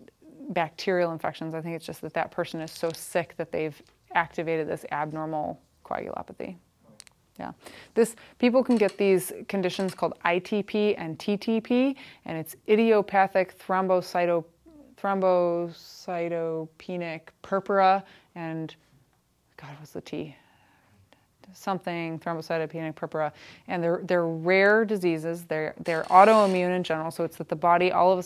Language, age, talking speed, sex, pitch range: English, 20-39, 125 wpm, female, 160-195 Hz